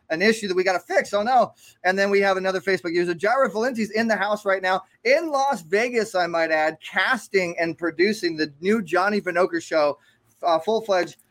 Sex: male